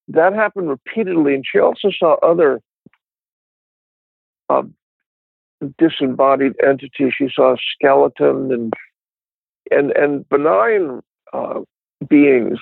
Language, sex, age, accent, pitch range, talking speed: English, male, 60-79, American, 125-165 Hz, 100 wpm